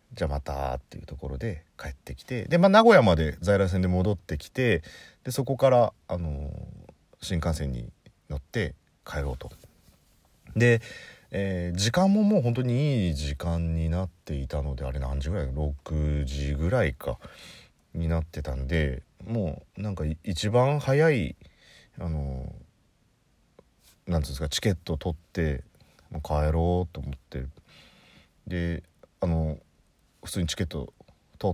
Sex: male